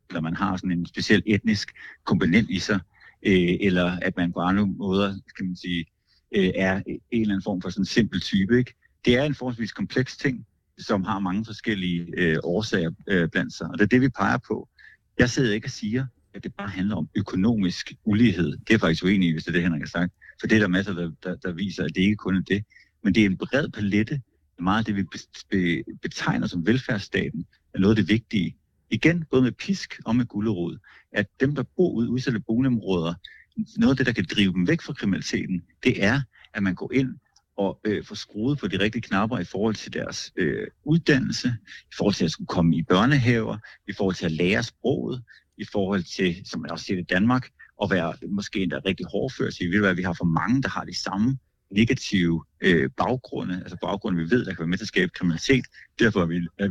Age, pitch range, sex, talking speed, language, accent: 60-79, 90-120 Hz, male, 225 wpm, Danish, native